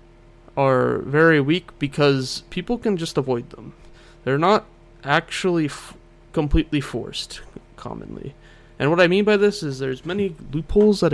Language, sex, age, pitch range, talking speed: English, male, 20-39, 130-160 Hz, 145 wpm